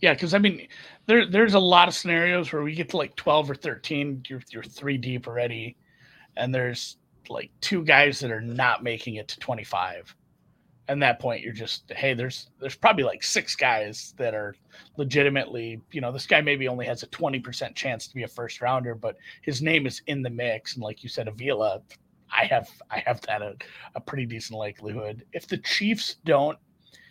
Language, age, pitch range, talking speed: English, 30-49, 120-160 Hz, 200 wpm